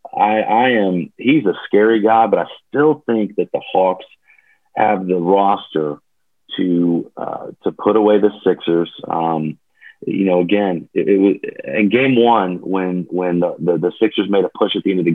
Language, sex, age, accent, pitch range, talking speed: English, male, 40-59, American, 95-120 Hz, 190 wpm